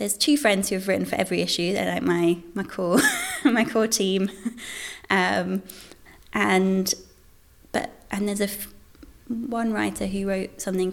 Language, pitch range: English, 170-225 Hz